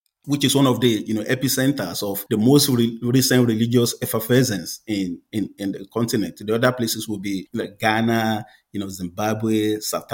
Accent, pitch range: Nigerian, 110-135 Hz